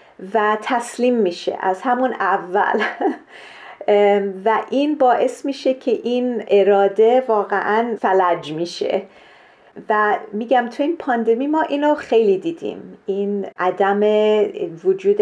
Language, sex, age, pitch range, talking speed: Persian, female, 40-59, 195-245 Hz, 110 wpm